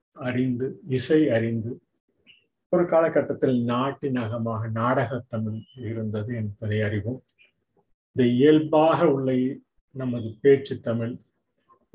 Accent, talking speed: native, 90 wpm